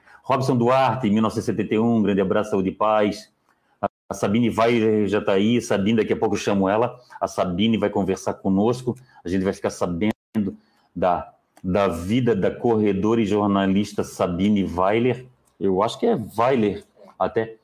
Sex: male